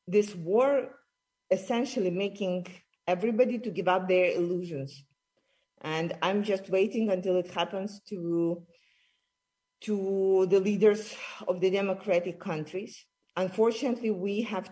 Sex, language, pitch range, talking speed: female, English, 170-210 Hz, 115 wpm